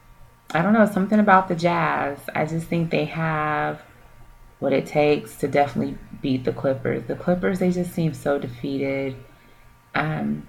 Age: 30-49